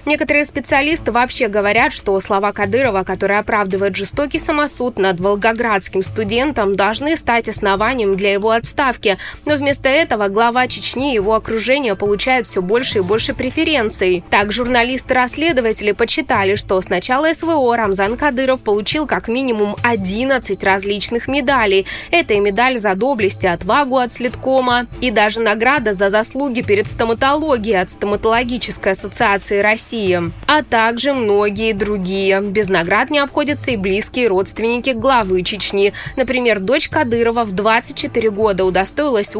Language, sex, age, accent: Russian, female, 20-39, native